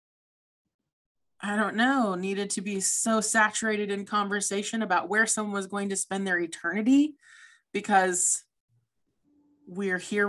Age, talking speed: 20-39, 130 wpm